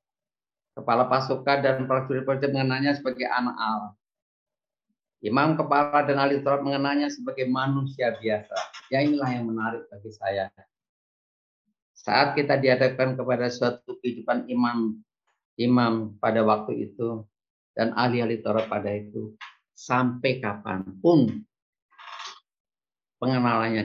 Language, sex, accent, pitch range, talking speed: Indonesian, male, native, 110-145 Hz, 105 wpm